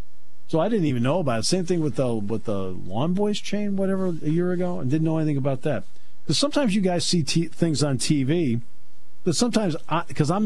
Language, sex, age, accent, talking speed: English, male, 50-69, American, 225 wpm